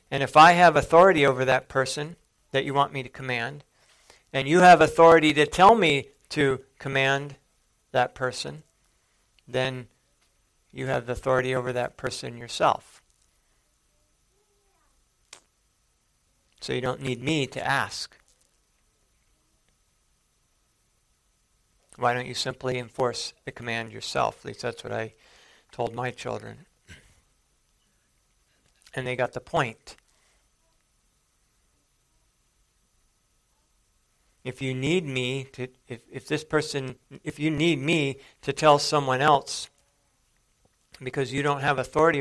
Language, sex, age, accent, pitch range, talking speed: English, male, 50-69, American, 120-145 Hz, 120 wpm